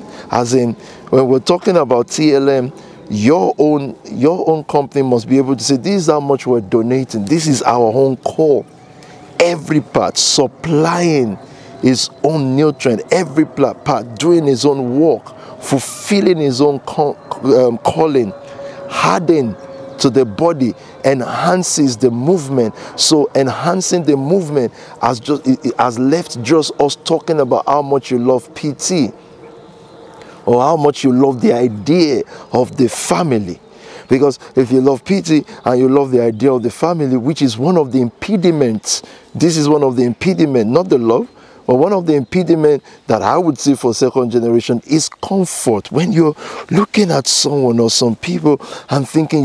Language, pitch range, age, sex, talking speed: English, 130-160 Hz, 50-69, male, 160 wpm